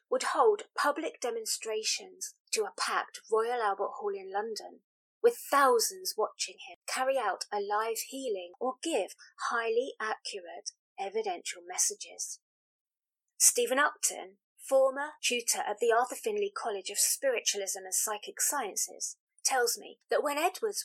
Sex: female